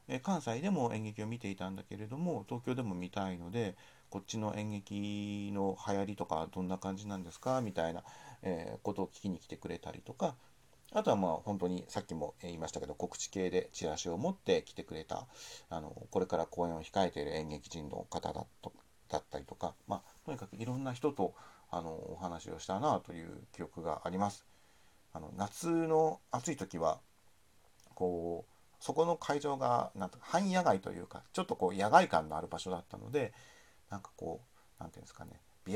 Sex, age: male, 40-59